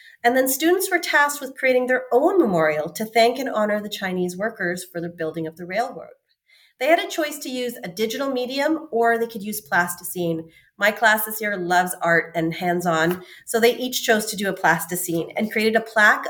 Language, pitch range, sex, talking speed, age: English, 180-240 Hz, female, 215 wpm, 30-49